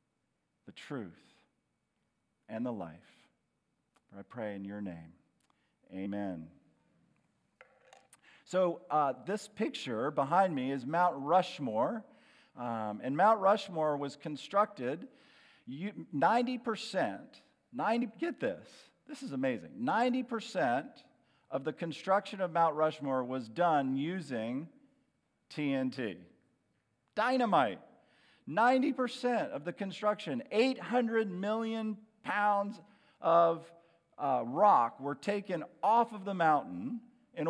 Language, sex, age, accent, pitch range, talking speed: English, male, 50-69, American, 150-225 Hz, 100 wpm